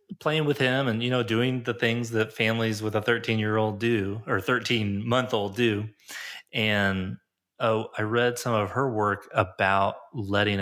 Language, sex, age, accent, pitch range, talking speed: English, male, 30-49, American, 95-115 Hz, 180 wpm